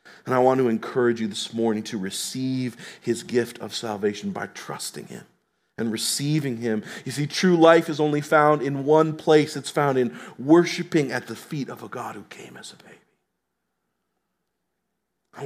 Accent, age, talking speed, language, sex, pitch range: American, 40-59, 180 wpm, English, male, 105-135 Hz